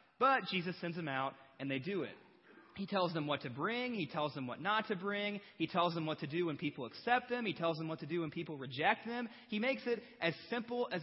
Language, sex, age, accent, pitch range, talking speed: English, male, 30-49, American, 135-195 Hz, 260 wpm